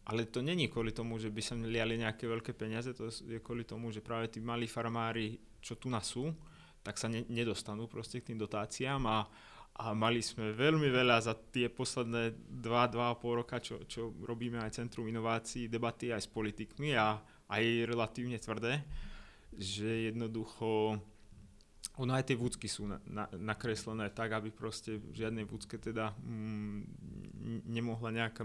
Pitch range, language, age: 110-125 Hz, Slovak, 20-39